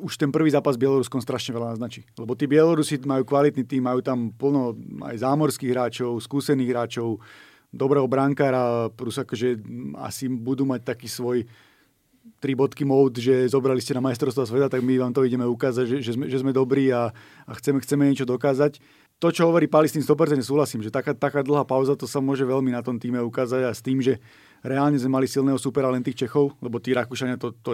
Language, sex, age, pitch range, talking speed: Slovak, male, 30-49, 125-150 Hz, 200 wpm